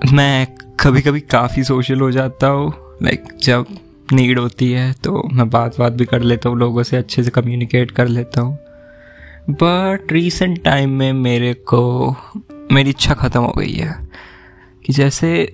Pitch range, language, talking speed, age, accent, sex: 120-140 Hz, Hindi, 170 wpm, 20-39, native, male